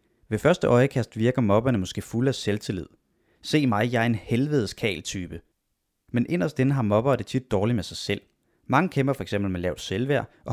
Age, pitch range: 30-49, 100-130 Hz